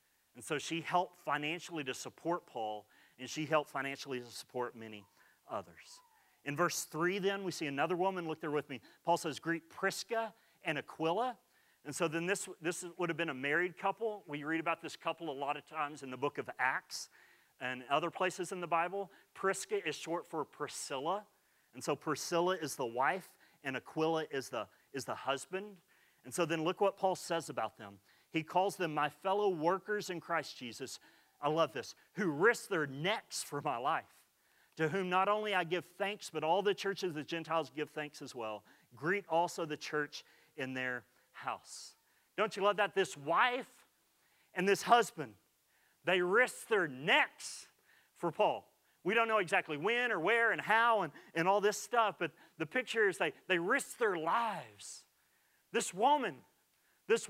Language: English